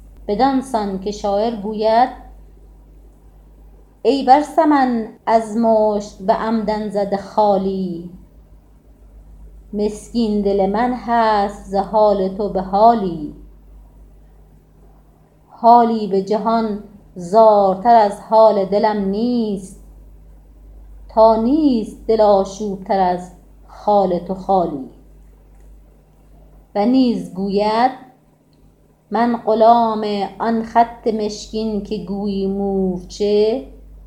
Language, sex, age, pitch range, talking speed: Persian, female, 30-49, 190-230 Hz, 85 wpm